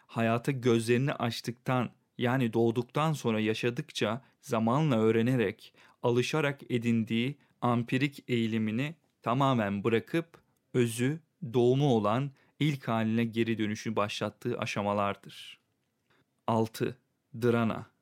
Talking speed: 85 wpm